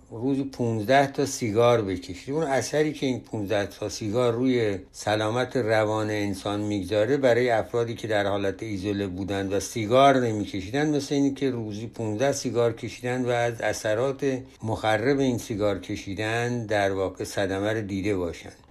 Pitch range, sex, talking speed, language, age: 105-135 Hz, male, 155 wpm, Persian, 60-79